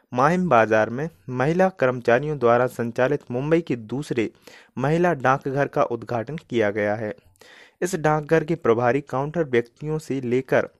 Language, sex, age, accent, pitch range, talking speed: Hindi, male, 30-49, native, 120-160 Hz, 140 wpm